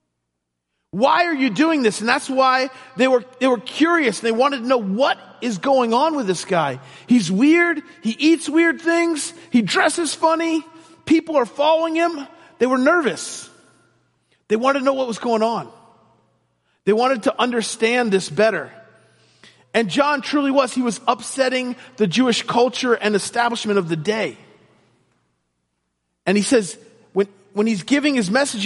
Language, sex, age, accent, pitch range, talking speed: English, male, 40-59, American, 205-285 Hz, 160 wpm